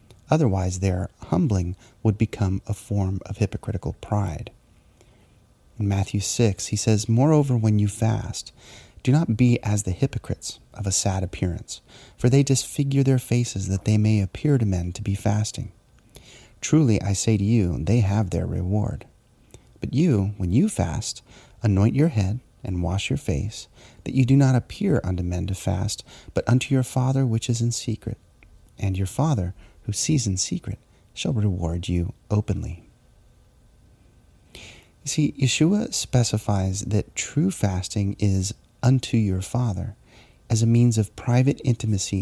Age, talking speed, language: 30-49, 155 wpm, English